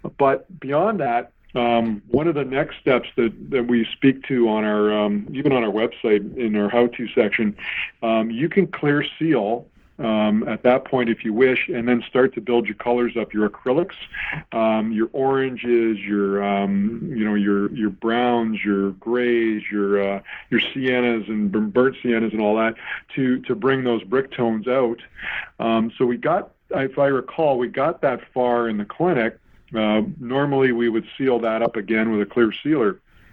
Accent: American